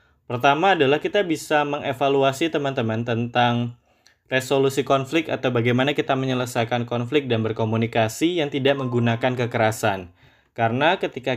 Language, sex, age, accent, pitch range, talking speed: Indonesian, male, 20-39, native, 115-155 Hz, 115 wpm